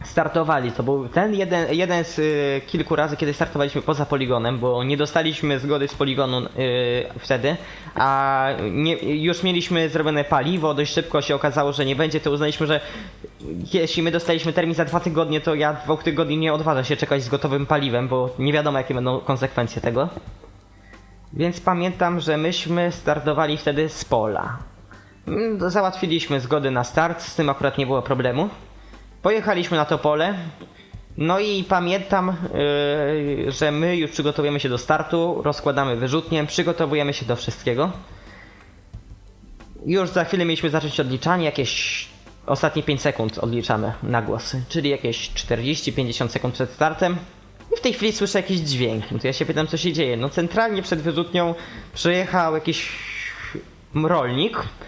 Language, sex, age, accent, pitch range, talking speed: Polish, male, 20-39, native, 135-165 Hz, 155 wpm